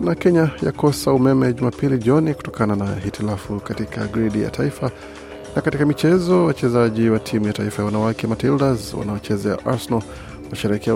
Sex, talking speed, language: male, 140 wpm, Swahili